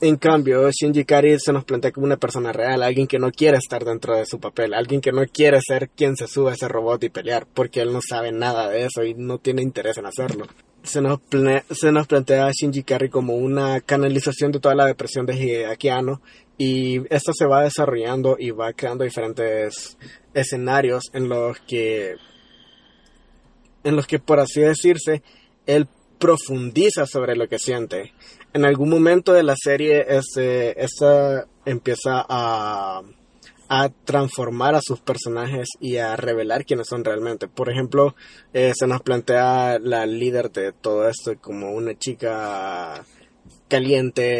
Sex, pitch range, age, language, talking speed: male, 120-140 Hz, 20-39, Spanish, 170 wpm